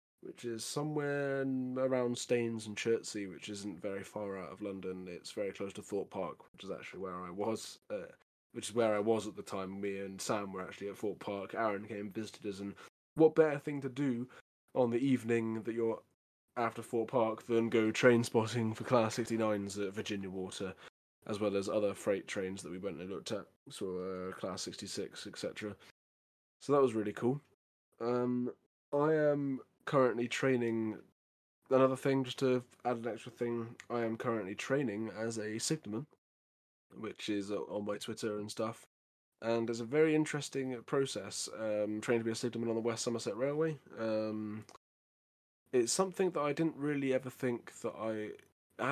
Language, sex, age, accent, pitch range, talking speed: English, male, 20-39, British, 105-130 Hz, 185 wpm